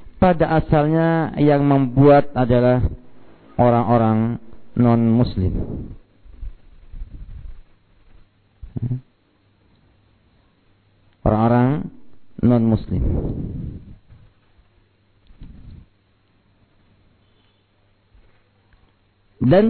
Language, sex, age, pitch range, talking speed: Malay, male, 50-69, 100-160 Hz, 35 wpm